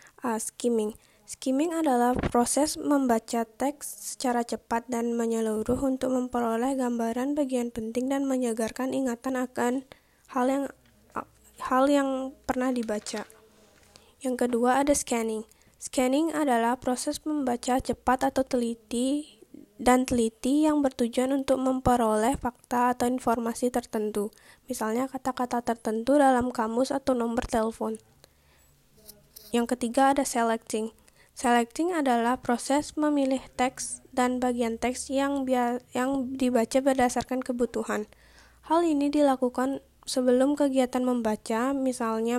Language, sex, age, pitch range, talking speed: Indonesian, female, 10-29, 235-270 Hz, 110 wpm